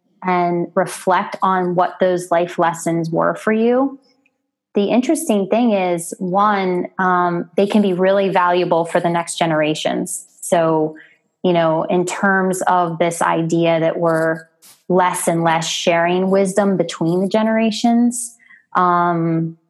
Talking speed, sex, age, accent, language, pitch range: 135 wpm, female, 20-39, American, English, 170-190 Hz